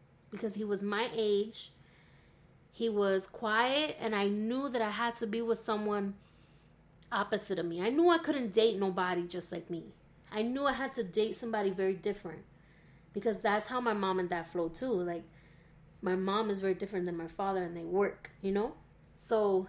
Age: 20-39